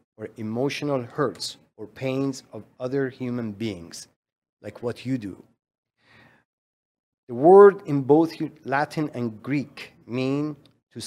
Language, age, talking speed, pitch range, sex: English, 40-59, 120 wpm, 120-150 Hz, male